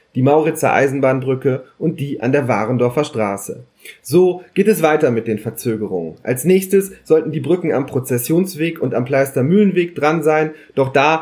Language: German